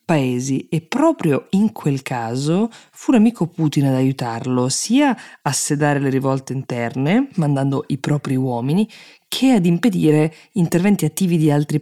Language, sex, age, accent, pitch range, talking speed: Italian, female, 20-39, native, 135-170 Hz, 140 wpm